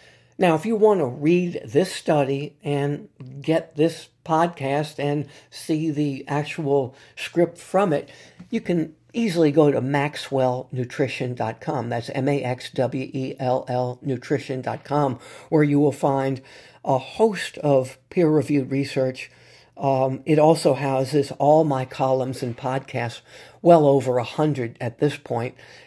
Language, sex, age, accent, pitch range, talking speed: English, male, 50-69, American, 135-155 Hz, 125 wpm